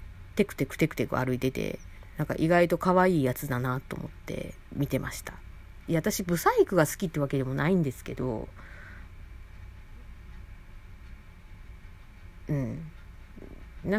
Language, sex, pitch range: Japanese, female, 90-145 Hz